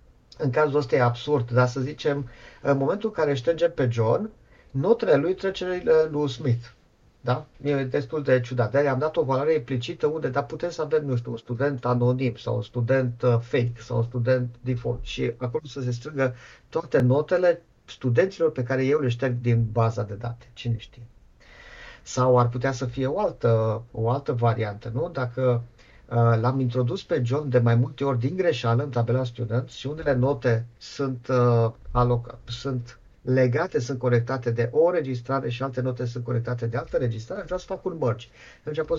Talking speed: 190 wpm